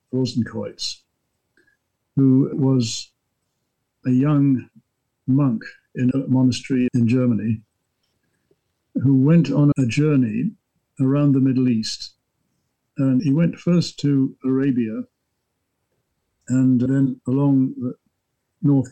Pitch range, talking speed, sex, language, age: 115-135 Hz, 100 wpm, male, English, 60-79